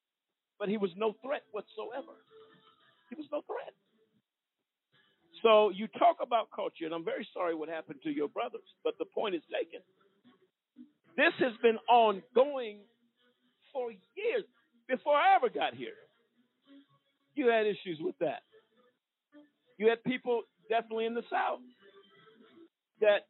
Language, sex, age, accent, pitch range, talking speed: English, male, 50-69, American, 200-310 Hz, 135 wpm